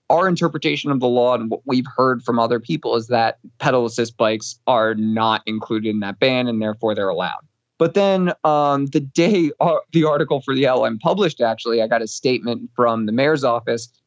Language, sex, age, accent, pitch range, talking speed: English, male, 20-39, American, 115-140 Hz, 200 wpm